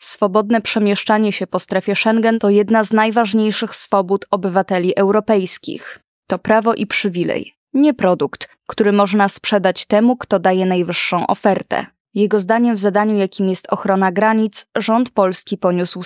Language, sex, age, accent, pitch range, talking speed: Polish, female, 20-39, native, 190-215 Hz, 140 wpm